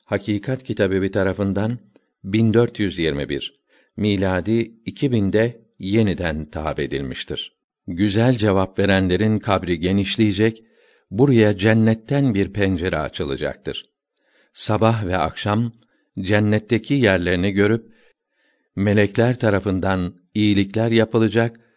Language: Turkish